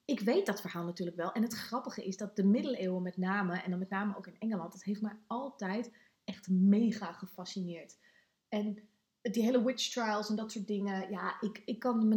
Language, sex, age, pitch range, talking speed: Dutch, female, 20-39, 195-240 Hz, 210 wpm